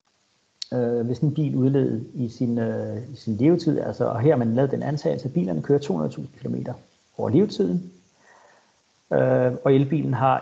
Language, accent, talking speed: Danish, native, 160 wpm